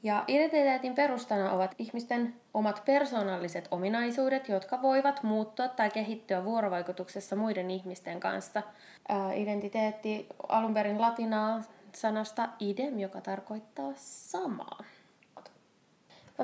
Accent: native